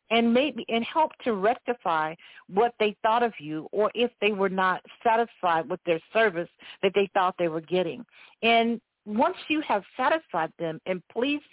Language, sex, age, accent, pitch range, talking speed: English, female, 50-69, American, 195-245 Hz, 175 wpm